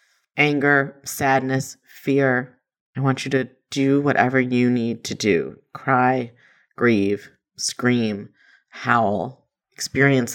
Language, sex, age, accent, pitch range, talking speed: English, female, 30-49, American, 125-140 Hz, 105 wpm